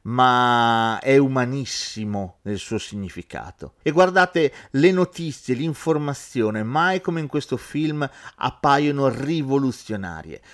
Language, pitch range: Italian, 105-145 Hz